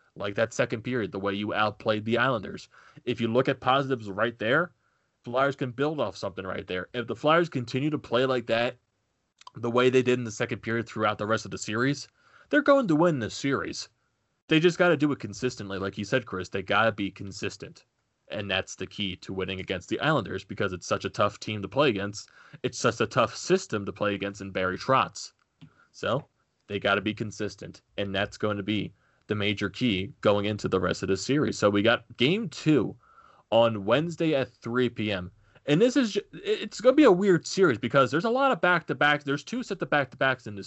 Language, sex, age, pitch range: English, male, 20-39, 105-145 Hz